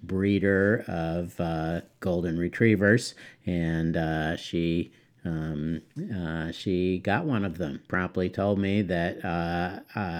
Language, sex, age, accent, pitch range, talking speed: English, male, 50-69, American, 80-95 Hz, 120 wpm